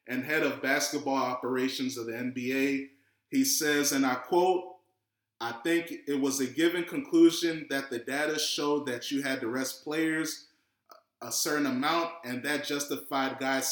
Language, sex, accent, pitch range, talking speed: English, male, American, 140-195 Hz, 160 wpm